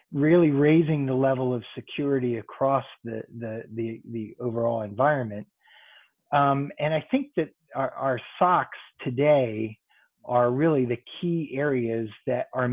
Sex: male